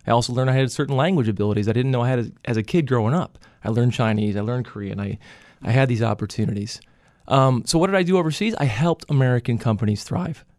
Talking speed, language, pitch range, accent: 240 wpm, English, 115-160 Hz, American